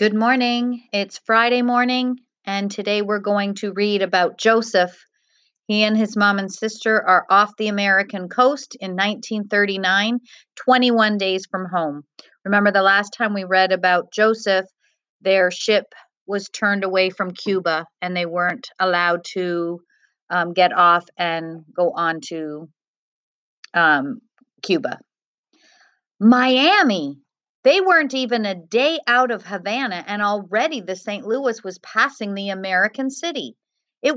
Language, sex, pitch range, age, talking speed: English, female, 185-240 Hz, 40-59, 140 wpm